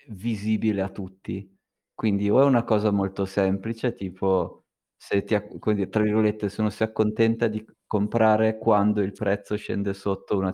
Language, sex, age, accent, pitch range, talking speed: Italian, male, 20-39, native, 100-110 Hz, 160 wpm